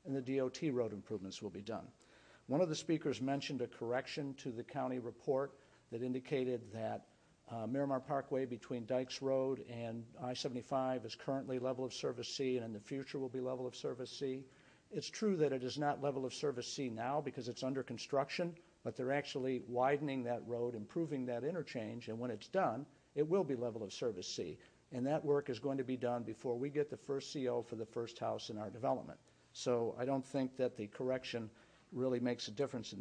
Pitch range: 125-145 Hz